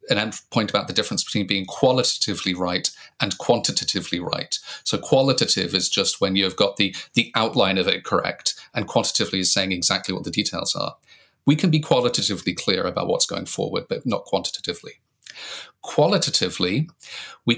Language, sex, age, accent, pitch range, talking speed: English, male, 30-49, British, 100-145 Hz, 165 wpm